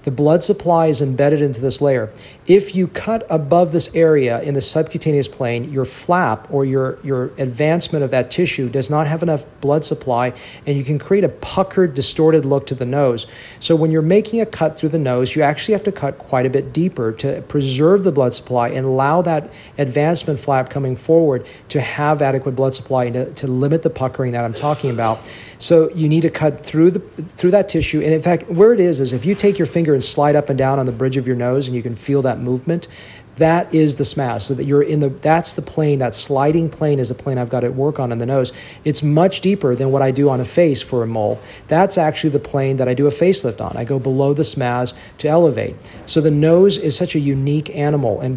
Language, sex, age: English, male, 40-59